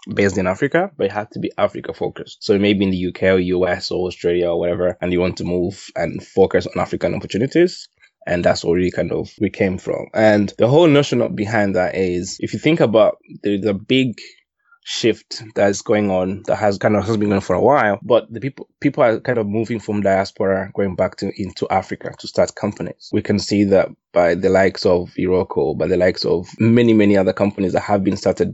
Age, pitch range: 20-39, 95-110 Hz